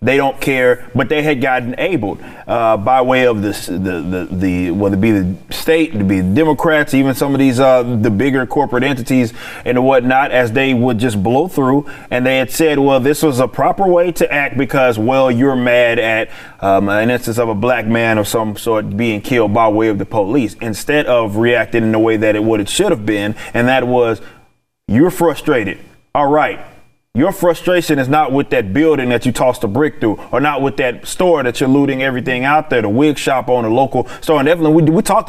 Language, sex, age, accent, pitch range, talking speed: English, male, 30-49, American, 120-155 Hz, 220 wpm